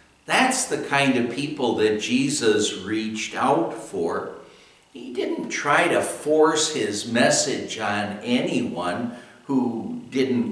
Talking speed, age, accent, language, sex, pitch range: 120 wpm, 60-79, American, English, male, 115-150 Hz